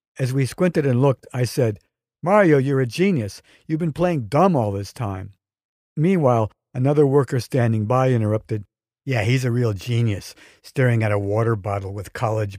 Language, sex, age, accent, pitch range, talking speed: English, male, 60-79, American, 110-140 Hz, 170 wpm